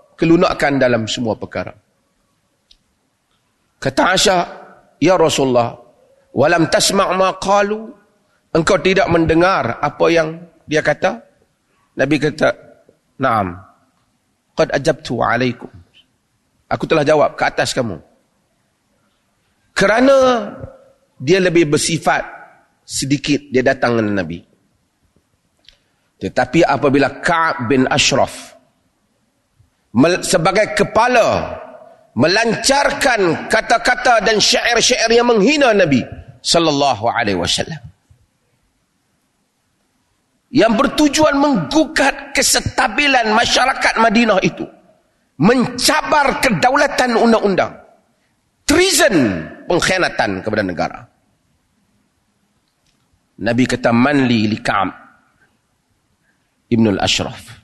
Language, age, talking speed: Malay, 40-59, 80 wpm